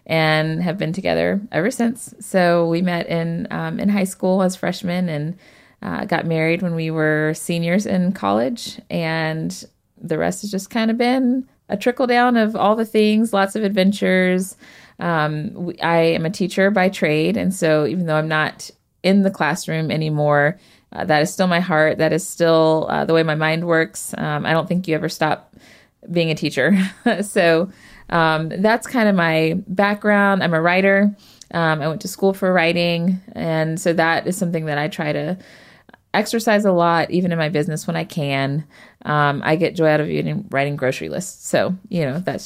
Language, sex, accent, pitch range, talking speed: English, female, American, 160-195 Hz, 190 wpm